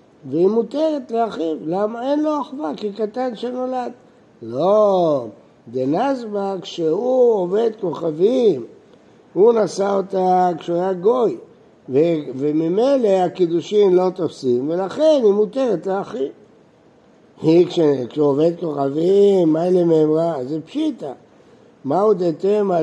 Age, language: 60-79, Hebrew